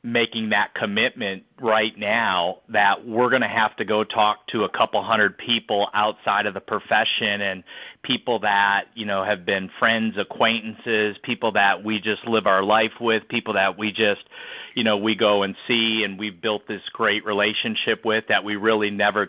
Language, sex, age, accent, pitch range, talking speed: English, male, 40-59, American, 105-120 Hz, 185 wpm